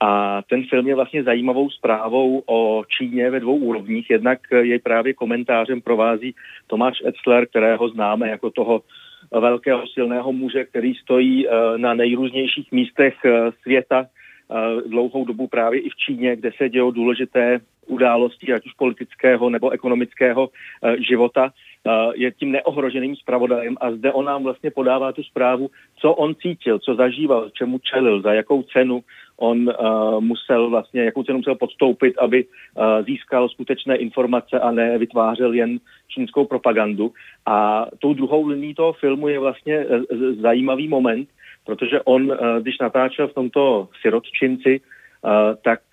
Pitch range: 115-135 Hz